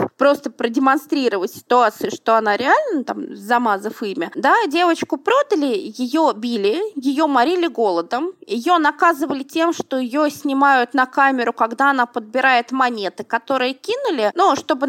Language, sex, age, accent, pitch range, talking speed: Russian, female, 20-39, native, 235-320 Hz, 135 wpm